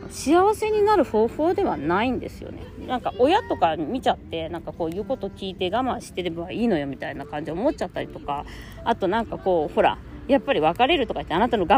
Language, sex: Japanese, female